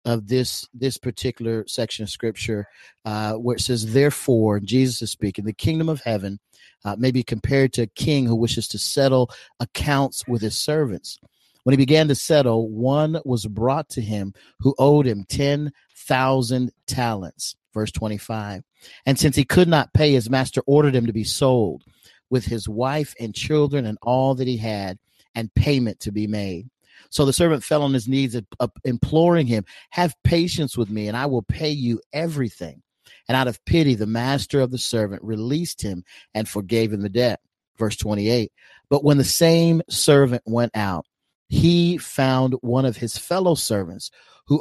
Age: 40-59